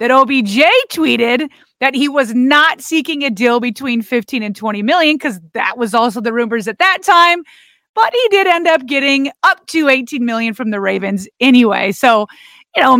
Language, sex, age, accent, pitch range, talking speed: English, female, 30-49, American, 230-300 Hz, 190 wpm